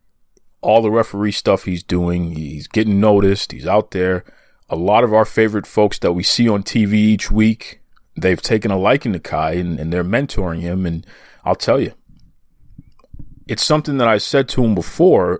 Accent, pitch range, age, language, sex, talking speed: American, 95-135 Hz, 40-59, English, male, 185 wpm